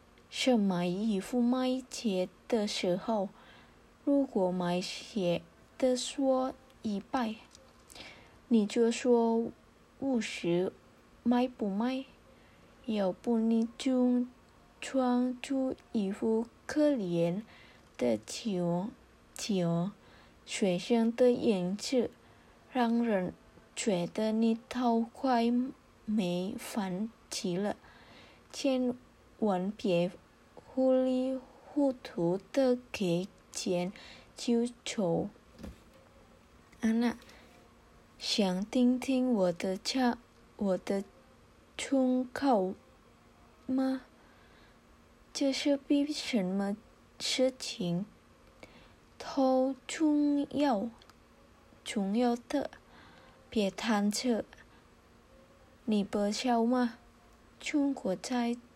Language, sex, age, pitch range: Indonesian, female, 20-39, 200-260 Hz